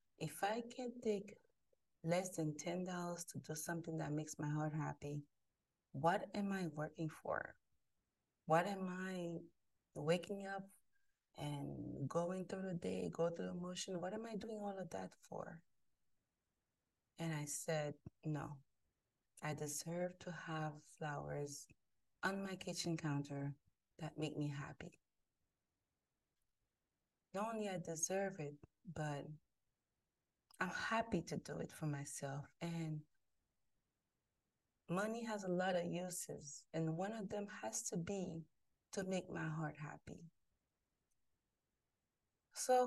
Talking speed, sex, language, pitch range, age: 130 wpm, female, English, 150-190 Hz, 30-49